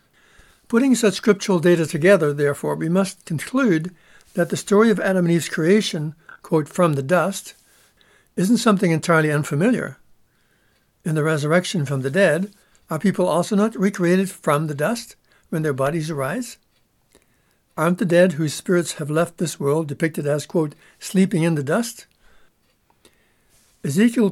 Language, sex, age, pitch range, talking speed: English, male, 60-79, 155-195 Hz, 150 wpm